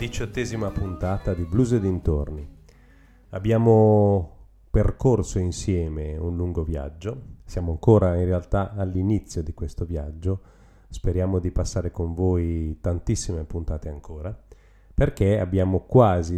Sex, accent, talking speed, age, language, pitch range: male, native, 115 wpm, 30-49, Italian, 85-100 Hz